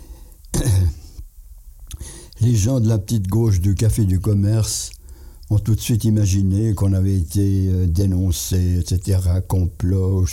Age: 60-79